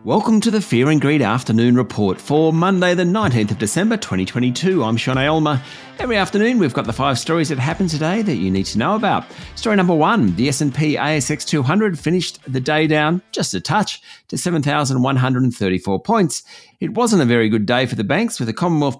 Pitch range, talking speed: 125-175 Hz, 200 wpm